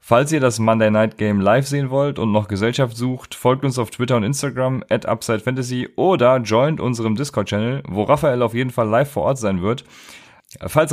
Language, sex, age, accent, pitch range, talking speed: German, male, 30-49, German, 105-130 Hz, 205 wpm